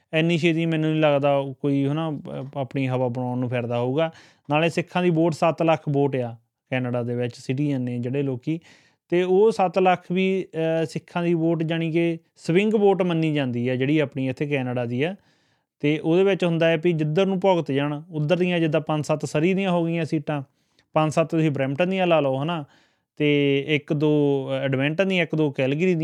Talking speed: 175 wpm